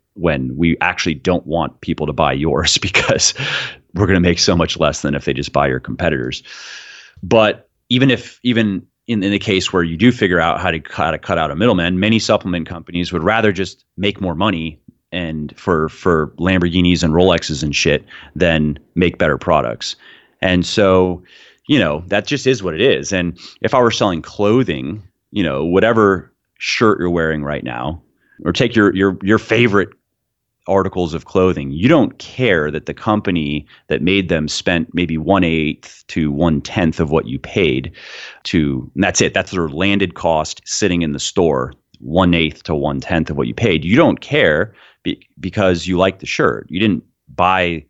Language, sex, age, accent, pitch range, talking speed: English, male, 30-49, American, 80-95 Hz, 190 wpm